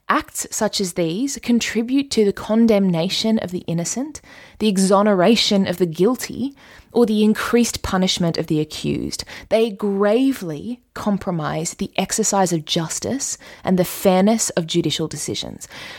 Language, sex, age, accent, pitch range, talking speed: English, female, 20-39, Australian, 185-250 Hz, 135 wpm